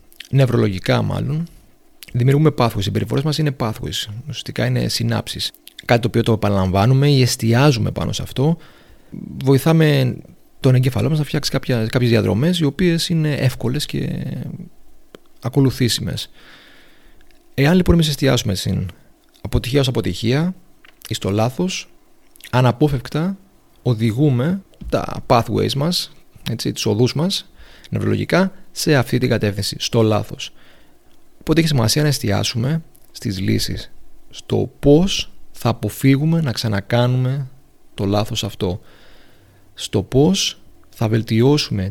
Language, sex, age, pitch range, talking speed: Greek, male, 30-49, 110-145 Hz, 115 wpm